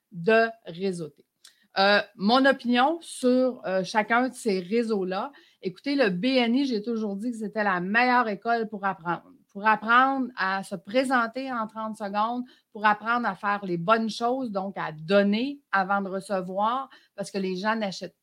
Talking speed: 165 wpm